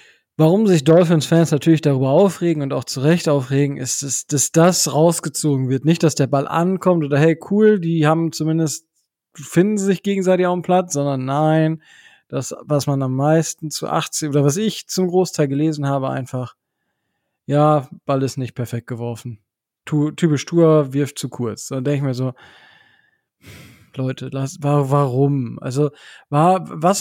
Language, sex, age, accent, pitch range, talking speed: German, male, 20-39, German, 145-190 Hz, 160 wpm